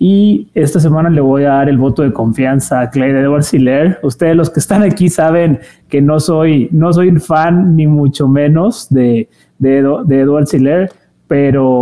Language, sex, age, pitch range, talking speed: Spanish, male, 30-49, 130-160 Hz, 195 wpm